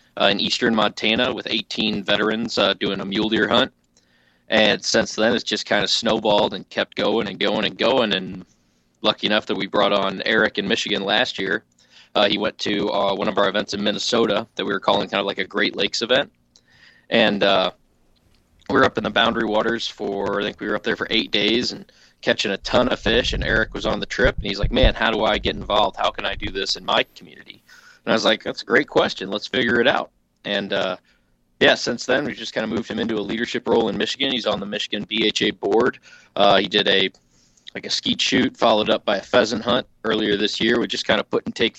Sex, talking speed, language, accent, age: male, 245 wpm, English, American, 20-39